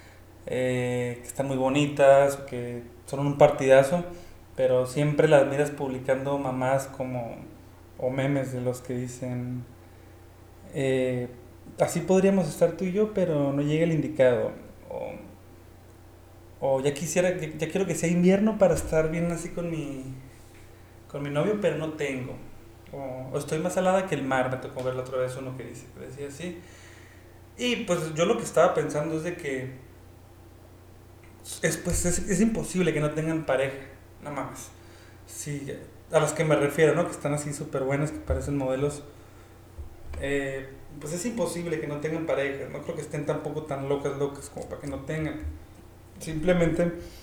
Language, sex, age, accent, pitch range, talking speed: Spanish, male, 30-49, Mexican, 100-155 Hz, 170 wpm